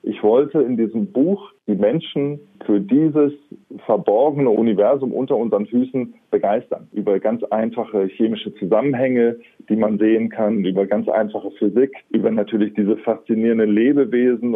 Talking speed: 135 wpm